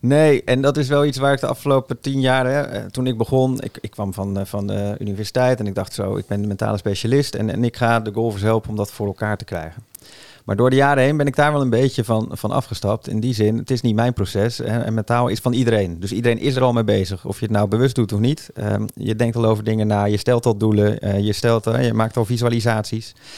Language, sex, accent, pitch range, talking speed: Dutch, male, Dutch, 100-125 Hz, 260 wpm